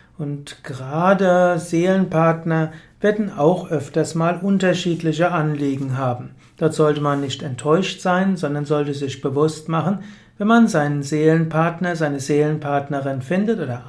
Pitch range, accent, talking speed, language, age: 150-175 Hz, German, 125 wpm, German, 60-79